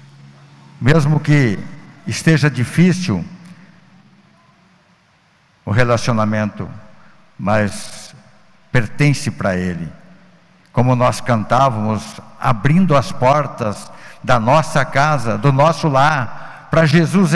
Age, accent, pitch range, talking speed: 60-79, Brazilian, 115-160 Hz, 85 wpm